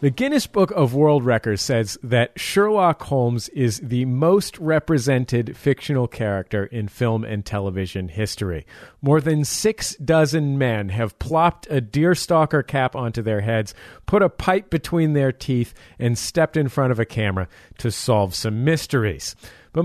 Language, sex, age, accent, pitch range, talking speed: English, male, 40-59, American, 115-165 Hz, 155 wpm